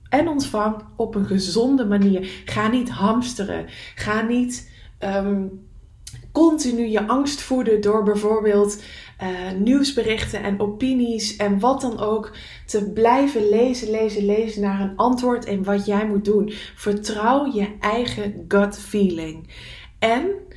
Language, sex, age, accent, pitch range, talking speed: English, female, 20-39, Dutch, 200-235 Hz, 130 wpm